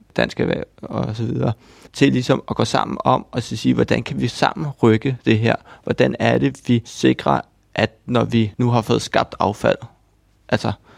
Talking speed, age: 185 wpm, 30-49